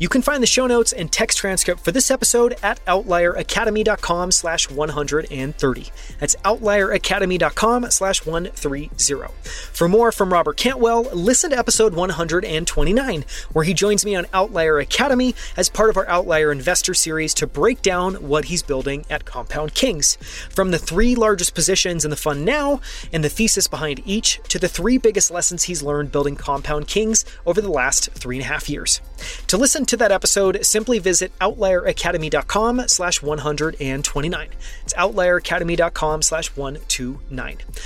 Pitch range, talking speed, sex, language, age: 155-215 Hz, 155 wpm, male, English, 30-49